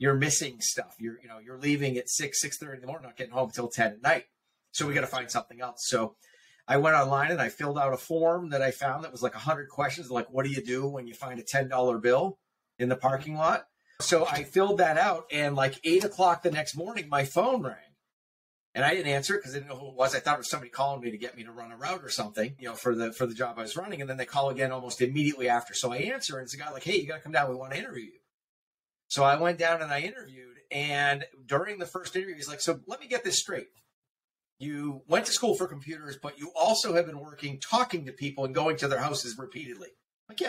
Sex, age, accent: male, 40-59, American